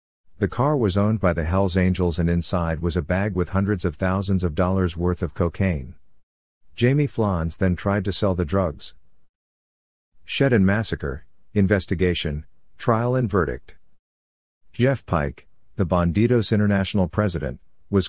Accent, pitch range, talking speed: American, 85-100 Hz, 145 wpm